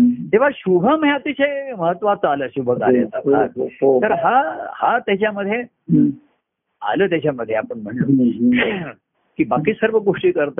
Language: Marathi